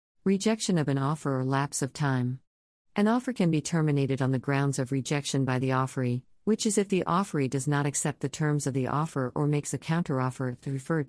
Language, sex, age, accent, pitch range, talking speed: English, female, 50-69, American, 130-165 Hz, 210 wpm